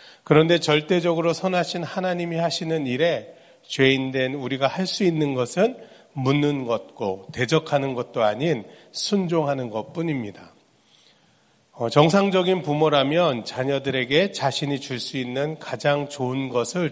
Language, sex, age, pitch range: Korean, male, 40-59, 120-165 Hz